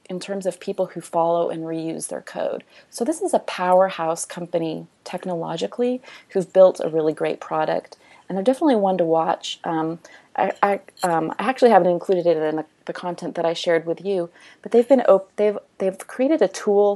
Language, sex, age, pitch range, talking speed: English, female, 30-49, 165-210 Hz, 200 wpm